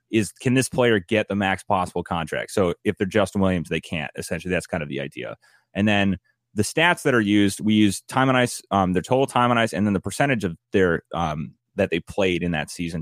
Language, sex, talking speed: English, male, 245 wpm